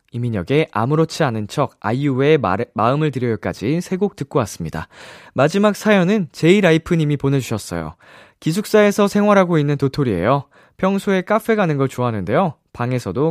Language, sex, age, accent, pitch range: Korean, male, 20-39, native, 105-160 Hz